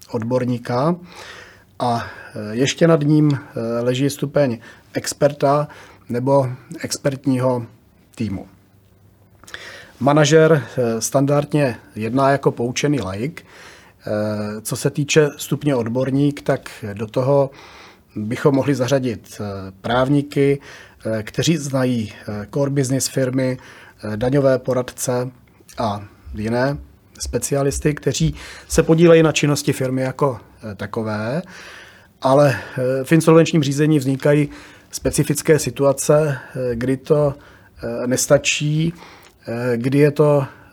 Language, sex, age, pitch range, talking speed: Czech, male, 40-59, 115-145 Hz, 90 wpm